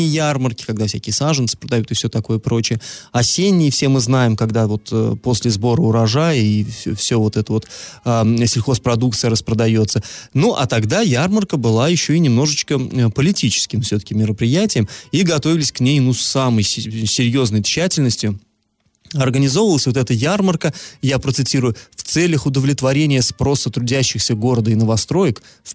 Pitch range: 110-140 Hz